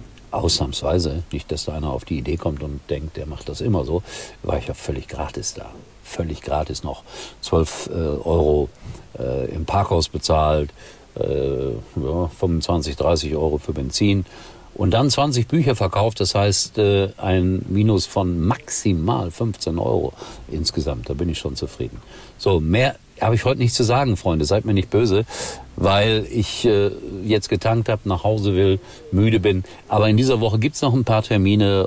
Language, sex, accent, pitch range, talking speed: German, male, German, 80-105 Hz, 175 wpm